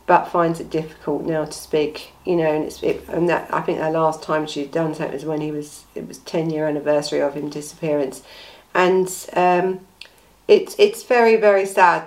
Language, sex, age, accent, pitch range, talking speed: English, female, 50-69, British, 165-205 Hz, 205 wpm